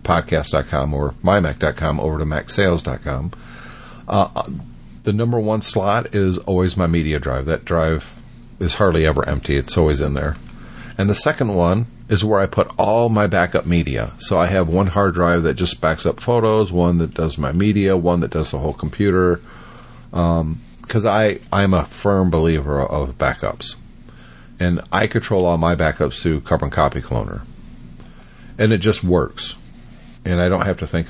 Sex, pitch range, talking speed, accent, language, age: male, 75-100 Hz, 175 wpm, American, English, 40-59